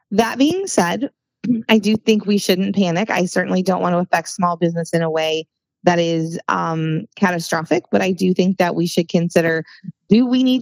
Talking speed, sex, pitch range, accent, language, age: 200 wpm, female, 175-205 Hz, American, English, 20-39